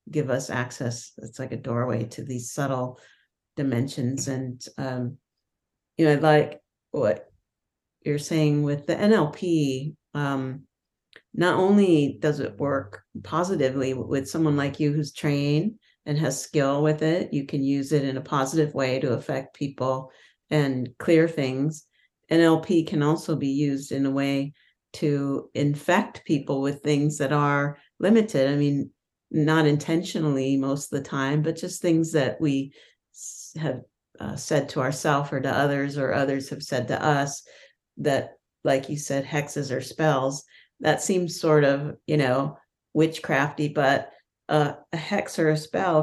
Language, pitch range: English, 135-155 Hz